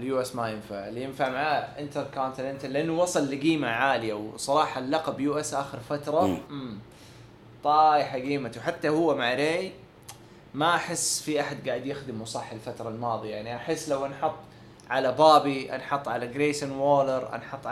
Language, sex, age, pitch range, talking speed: English, male, 20-39, 120-155 Hz, 150 wpm